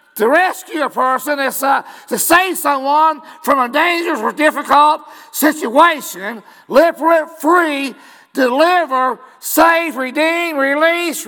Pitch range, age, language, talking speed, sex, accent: 270-370 Hz, 50-69, English, 110 wpm, male, American